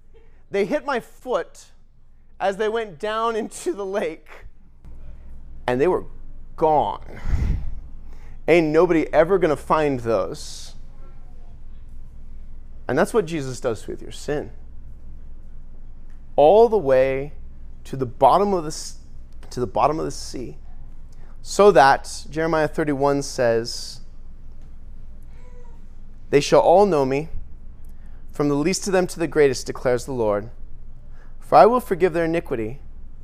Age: 30-49